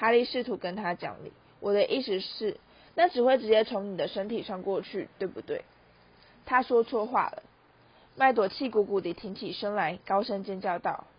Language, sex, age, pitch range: Chinese, female, 20-39, 195-250 Hz